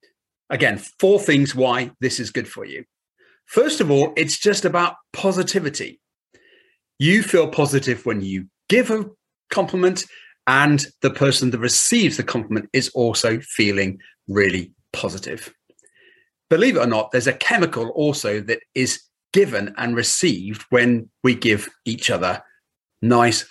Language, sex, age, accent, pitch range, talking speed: English, male, 40-59, British, 120-185 Hz, 140 wpm